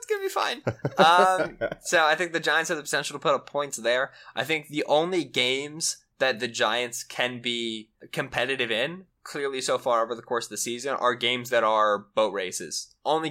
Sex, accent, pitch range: male, American, 110-135 Hz